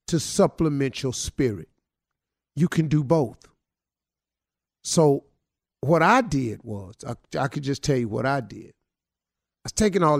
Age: 50-69